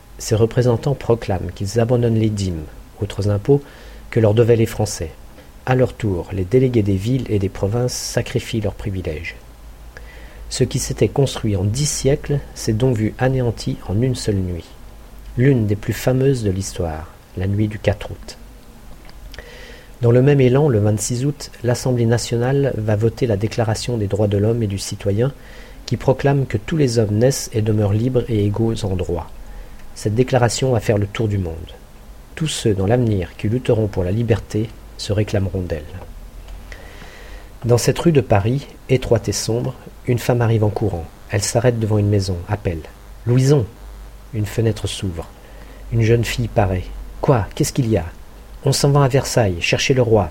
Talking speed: 175 wpm